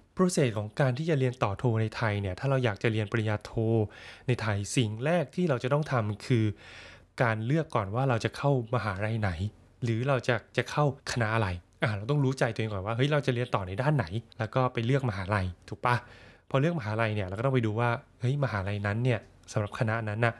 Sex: male